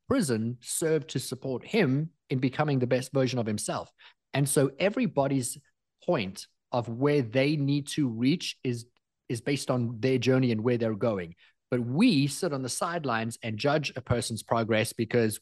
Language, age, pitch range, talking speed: English, 30-49, 115-145 Hz, 170 wpm